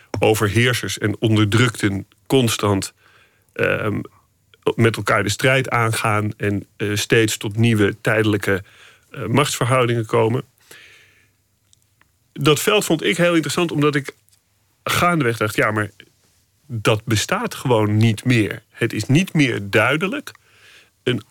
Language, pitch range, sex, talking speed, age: Dutch, 105-130 Hz, male, 120 wpm, 40-59